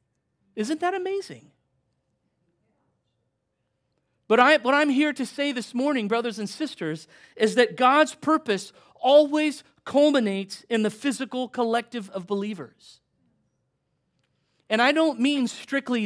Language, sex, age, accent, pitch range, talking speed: English, male, 40-59, American, 185-245 Hz, 120 wpm